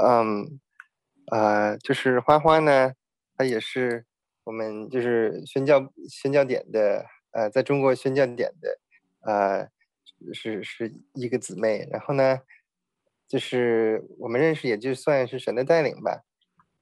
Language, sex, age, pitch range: Chinese, male, 20-39, 110-135 Hz